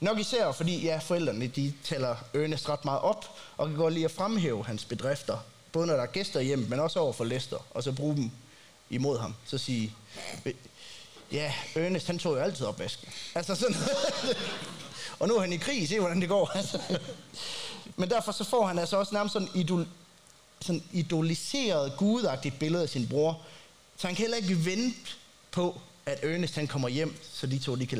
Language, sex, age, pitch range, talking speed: Danish, male, 30-49, 125-180 Hz, 195 wpm